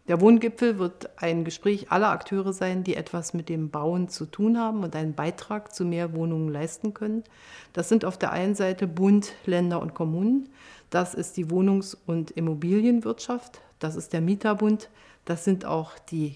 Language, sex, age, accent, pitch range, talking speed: German, female, 50-69, German, 170-220 Hz, 175 wpm